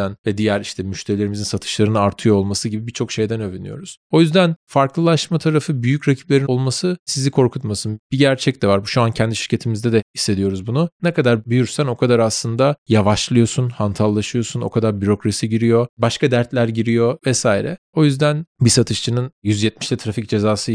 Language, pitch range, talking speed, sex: Turkish, 105-135 Hz, 160 wpm, male